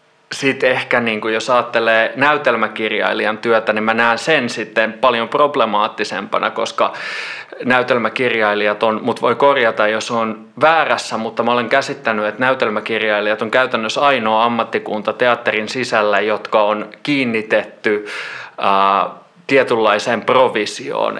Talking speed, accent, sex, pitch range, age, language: 110 wpm, native, male, 110-120 Hz, 30-49, Finnish